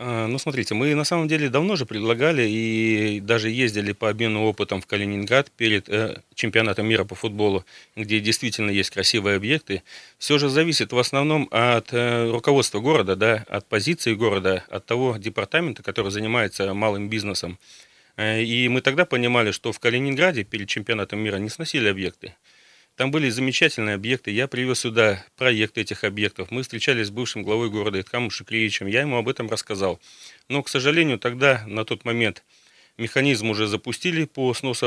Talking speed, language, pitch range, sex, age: 160 wpm, Russian, 105-125 Hz, male, 30-49